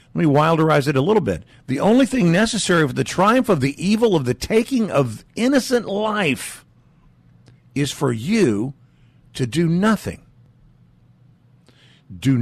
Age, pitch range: 50-69, 120-160 Hz